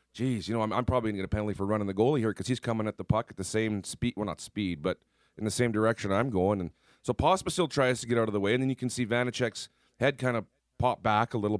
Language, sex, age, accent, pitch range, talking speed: English, male, 40-59, American, 105-130 Hz, 305 wpm